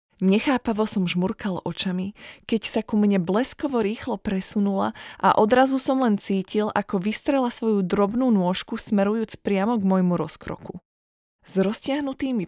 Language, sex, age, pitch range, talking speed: Slovak, female, 20-39, 175-220 Hz, 135 wpm